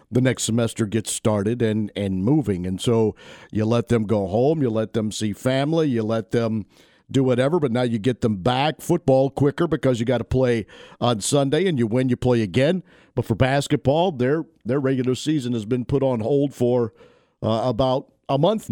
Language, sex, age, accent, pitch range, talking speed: English, male, 50-69, American, 110-135 Hz, 200 wpm